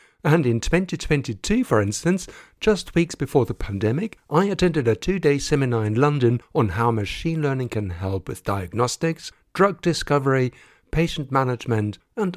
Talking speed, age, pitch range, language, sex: 145 wpm, 60-79, 110-155 Hz, English, male